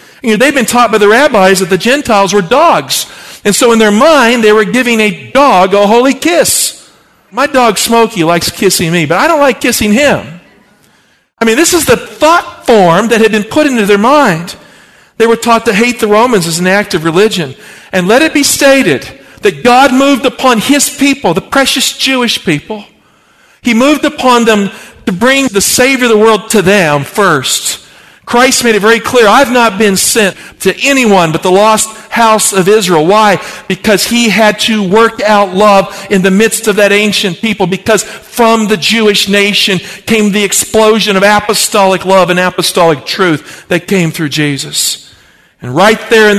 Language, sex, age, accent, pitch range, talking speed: English, male, 50-69, American, 190-230 Hz, 190 wpm